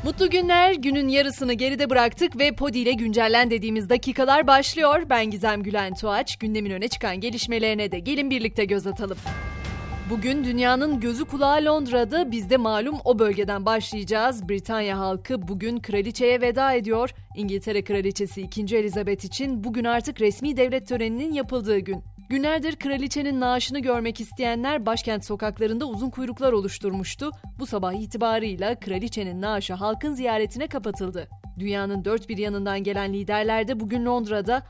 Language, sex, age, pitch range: Turkish, female, 30-49, 200-255 Hz